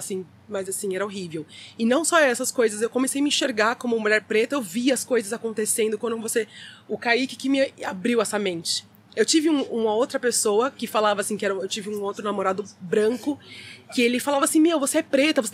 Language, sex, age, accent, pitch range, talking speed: Portuguese, female, 20-39, Brazilian, 215-285 Hz, 225 wpm